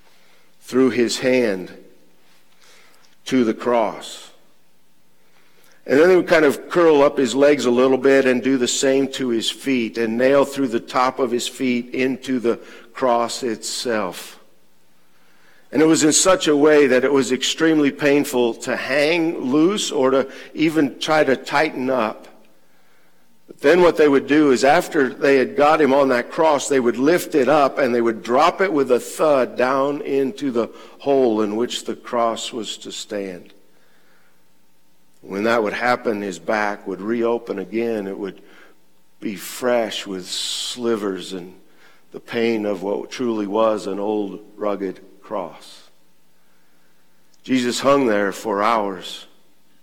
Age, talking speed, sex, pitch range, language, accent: 50-69, 155 wpm, male, 100-135 Hz, English, American